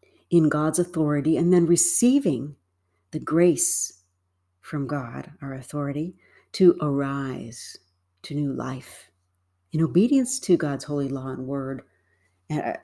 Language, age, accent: English, 60-79, American